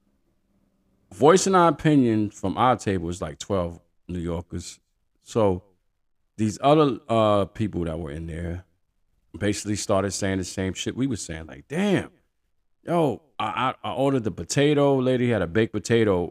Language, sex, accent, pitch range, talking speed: English, male, American, 85-115 Hz, 160 wpm